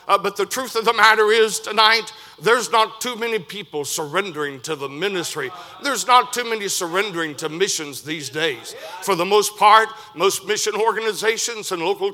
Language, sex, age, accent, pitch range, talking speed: English, male, 60-79, American, 185-225 Hz, 180 wpm